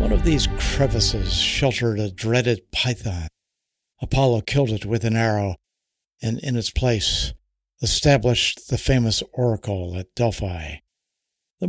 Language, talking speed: English, 130 wpm